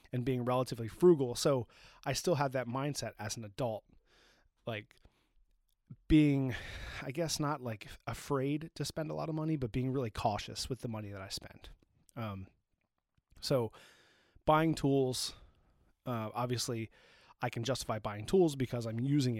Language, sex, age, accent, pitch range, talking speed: English, male, 30-49, American, 110-135 Hz, 155 wpm